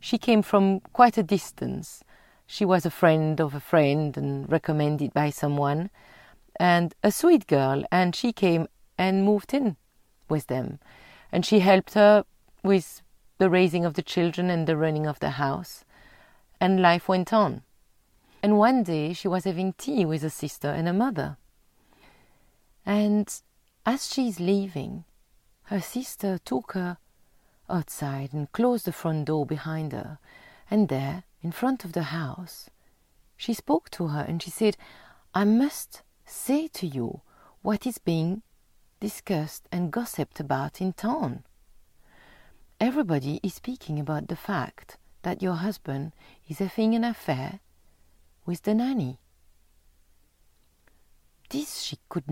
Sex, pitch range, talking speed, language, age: female, 150-210 Hz, 145 wpm, English, 40-59